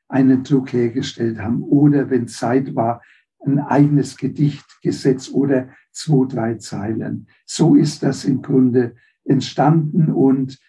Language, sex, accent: German, male, German